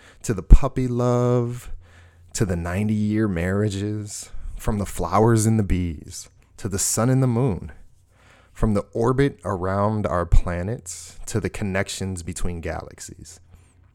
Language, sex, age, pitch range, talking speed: English, male, 30-49, 90-105 Hz, 135 wpm